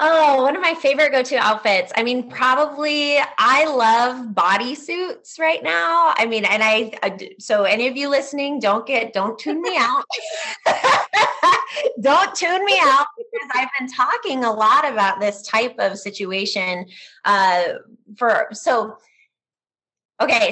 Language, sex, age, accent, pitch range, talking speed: English, female, 20-39, American, 190-245 Hz, 150 wpm